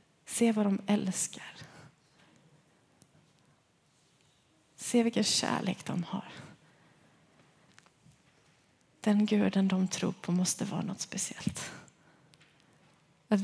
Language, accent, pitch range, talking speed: Swedish, native, 185-215 Hz, 85 wpm